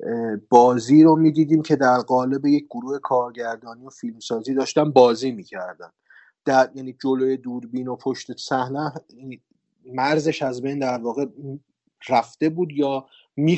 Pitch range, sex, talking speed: 115-140 Hz, male, 145 wpm